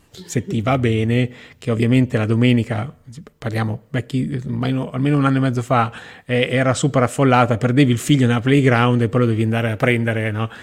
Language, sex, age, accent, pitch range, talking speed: Italian, male, 30-49, native, 115-135 Hz, 175 wpm